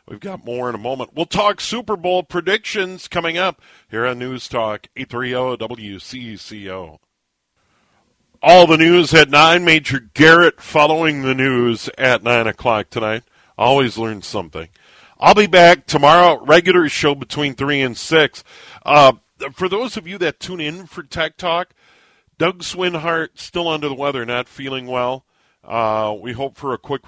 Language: English